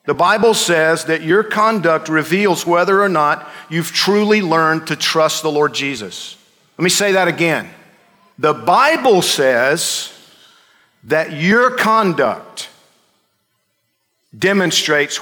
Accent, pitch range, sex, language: American, 155-205 Hz, male, English